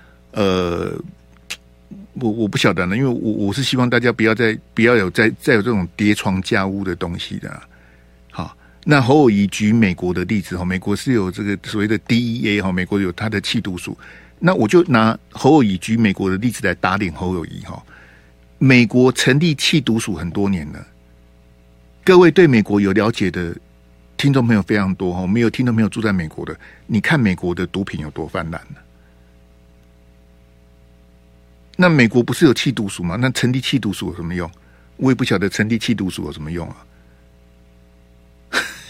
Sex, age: male, 50-69